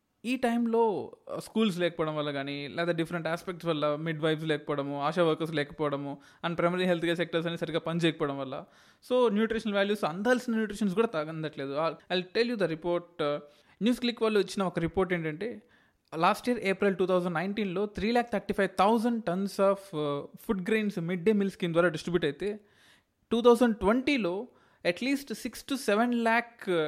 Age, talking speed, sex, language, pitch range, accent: 20-39, 165 wpm, male, Telugu, 170-225 Hz, native